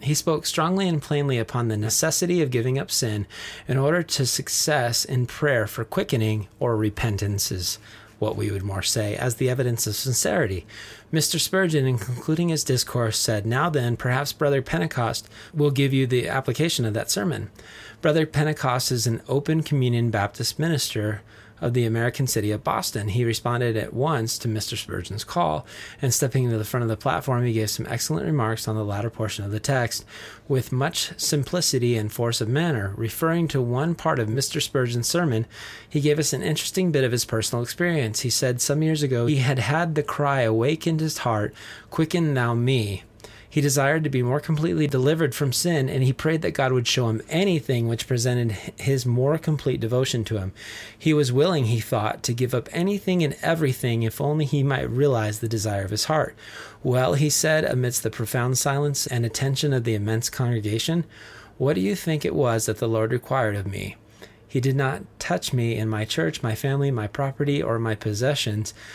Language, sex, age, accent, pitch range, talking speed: English, male, 30-49, American, 110-145 Hz, 195 wpm